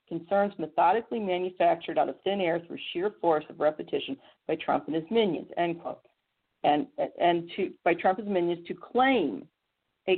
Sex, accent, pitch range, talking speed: female, American, 165-215 Hz, 175 wpm